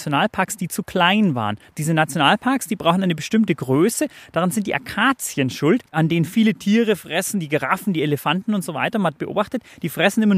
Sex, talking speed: male, 200 wpm